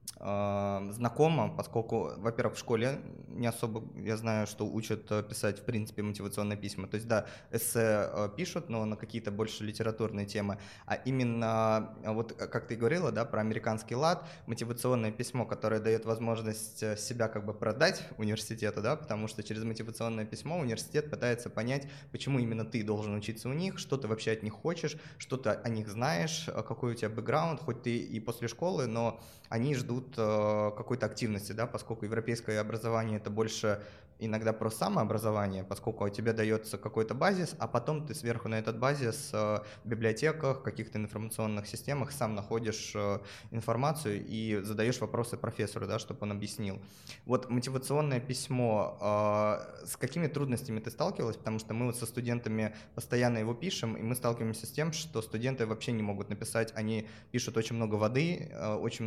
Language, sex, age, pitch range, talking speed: Russian, male, 20-39, 110-125 Hz, 165 wpm